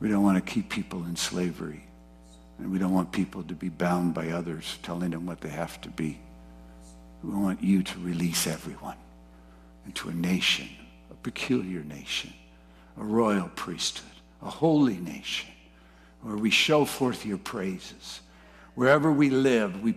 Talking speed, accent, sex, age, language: 160 wpm, American, male, 60-79, English